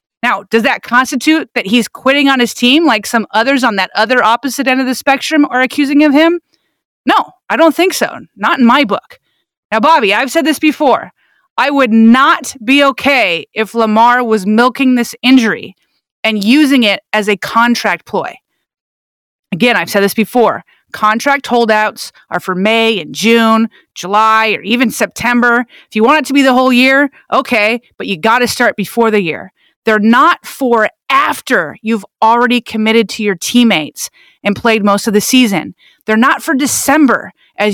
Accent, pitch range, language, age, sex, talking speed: American, 220-285 Hz, English, 30-49, female, 180 wpm